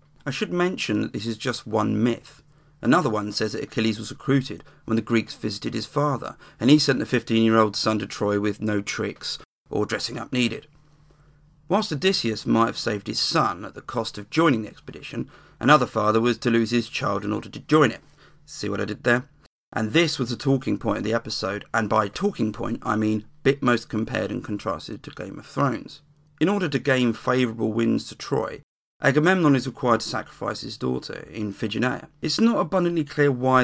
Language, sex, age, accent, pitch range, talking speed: English, male, 40-59, British, 110-145 Hz, 205 wpm